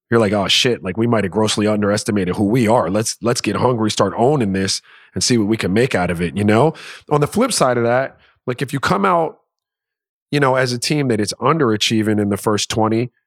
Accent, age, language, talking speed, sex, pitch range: American, 30-49, English, 245 wpm, male, 110-140 Hz